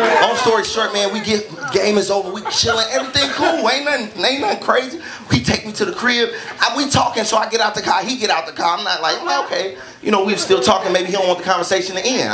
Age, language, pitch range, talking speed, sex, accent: 30-49, English, 195-265 Hz, 275 wpm, male, American